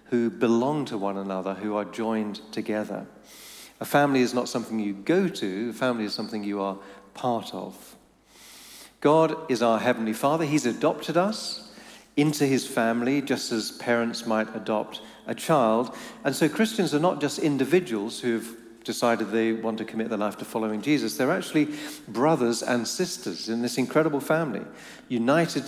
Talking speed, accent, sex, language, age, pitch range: 165 wpm, British, male, English, 40-59, 110-150 Hz